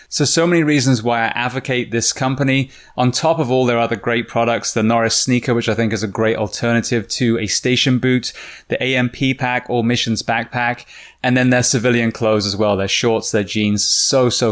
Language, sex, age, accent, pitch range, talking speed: English, male, 20-39, British, 115-135 Hz, 210 wpm